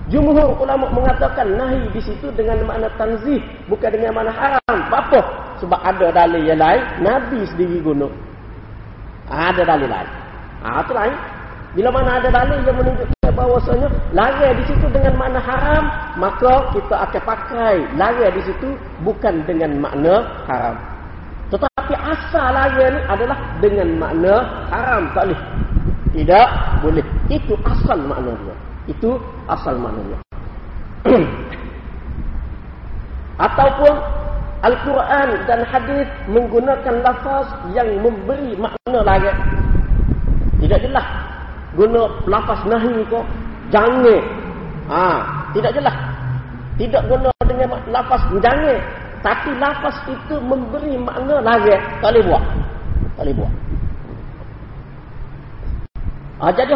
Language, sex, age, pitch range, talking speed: Malay, male, 40-59, 175-270 Hz, 115 wpm